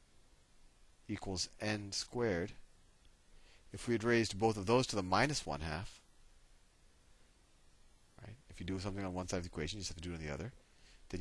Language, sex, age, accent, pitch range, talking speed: English, male, 40-59, American, 80-105 Hz, 185 wpm